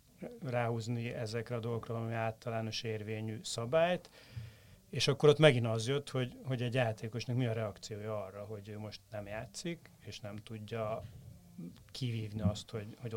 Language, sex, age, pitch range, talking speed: Hungarian, male, 30-49, 110-130 Hz, 155 wpm